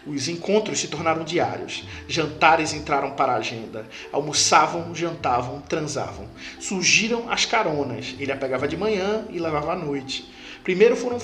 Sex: male